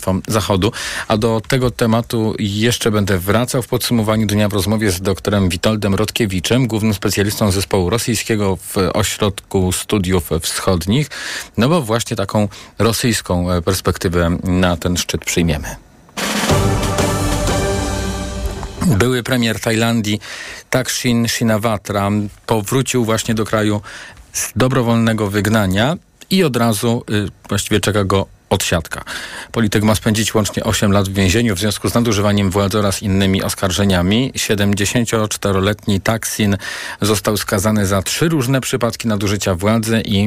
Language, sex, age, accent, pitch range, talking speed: Polish, male, 40-59, native, 100-115 Hz, 120 wpm